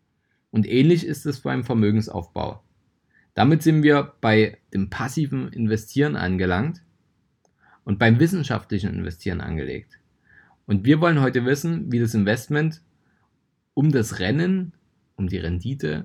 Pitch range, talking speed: 100-140 Hz, 125 wpm